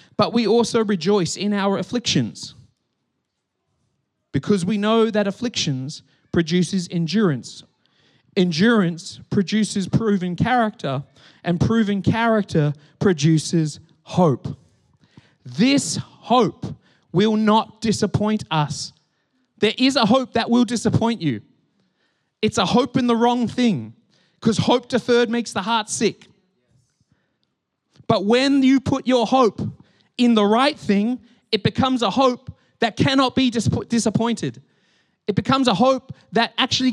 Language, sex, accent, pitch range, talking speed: English, male, Australian, 150-235 Hz, 120 wpm